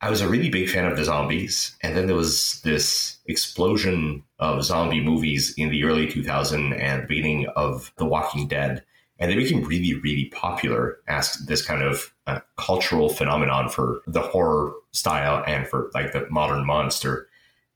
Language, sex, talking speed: English, male, 175 wpm